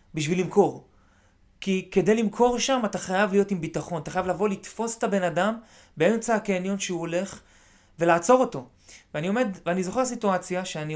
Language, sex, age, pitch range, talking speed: Hebrew, male, 30-49, 160-215 Hz, 165 wpm